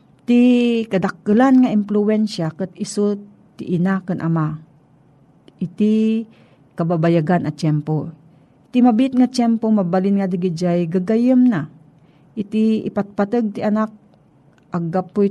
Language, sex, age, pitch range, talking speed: Filipino, female, 40-59, 165-220 Hz, 110 wpm